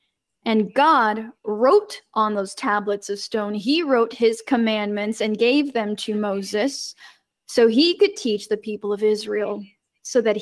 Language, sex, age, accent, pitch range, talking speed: English, female, 10-29, American, 220-285 Hz, 155 wpm